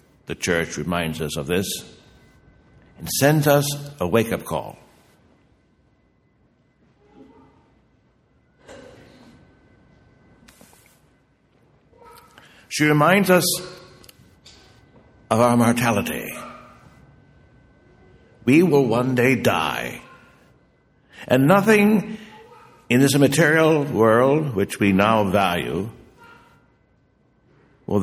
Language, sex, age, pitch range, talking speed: English, male, 60-79, 110-155 Hz, 75 wpm